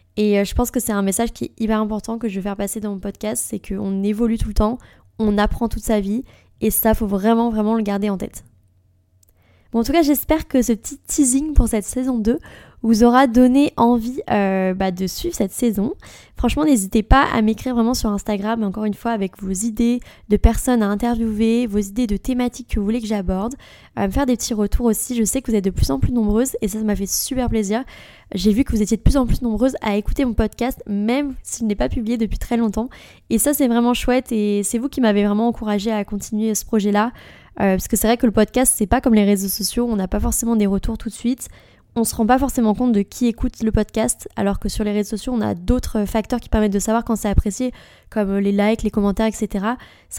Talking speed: 250 wpm